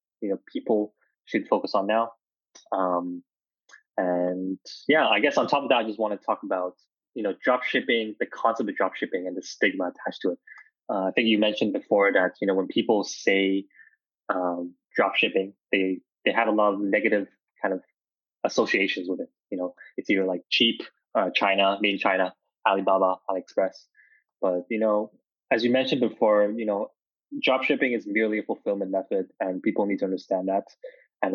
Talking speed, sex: 190 wpm, male